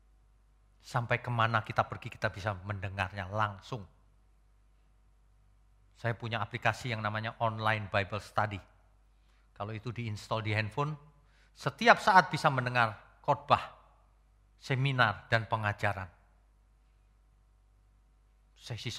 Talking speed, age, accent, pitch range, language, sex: 95 wpm, 40-59, native, 100-140 Hz, Indonesian, male